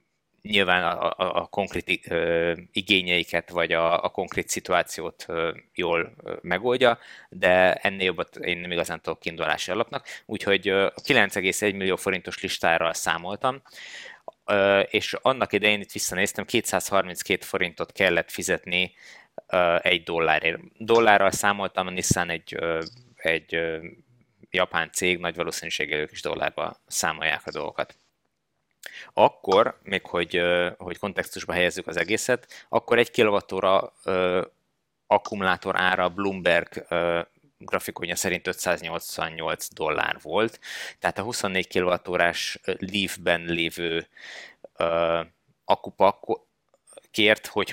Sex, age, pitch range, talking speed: male, 20-39, 85-100 Hz, 115 wpm